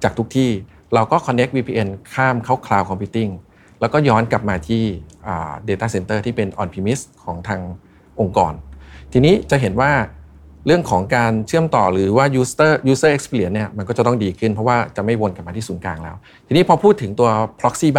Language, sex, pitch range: Thai, male, 100-130 Hz